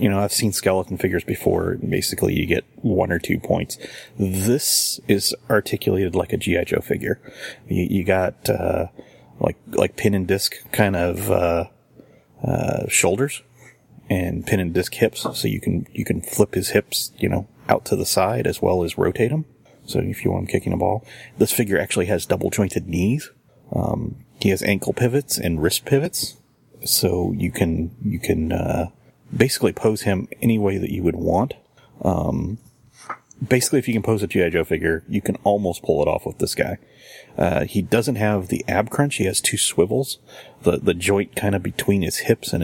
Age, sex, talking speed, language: 30-49, male, 195 wpm, English